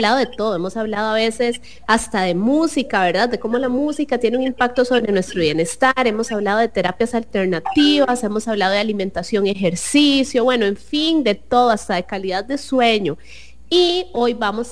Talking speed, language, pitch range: 180 wpm, English, 200-255 Hz